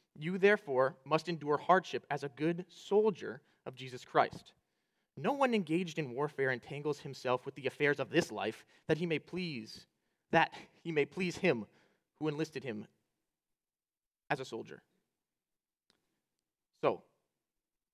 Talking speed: 135 wpm